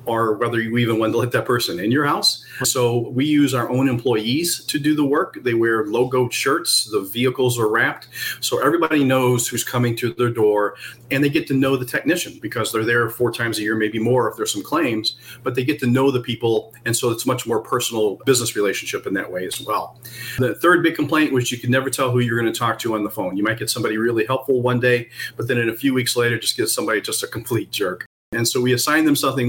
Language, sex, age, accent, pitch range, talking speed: English, male, 40-59, American, 115-130 Hz, 250 wpm